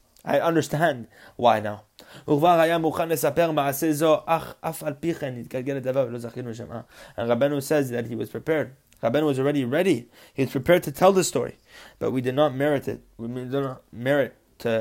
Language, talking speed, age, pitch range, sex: English, 135 wpm, 20-39, 125-160 Hz, male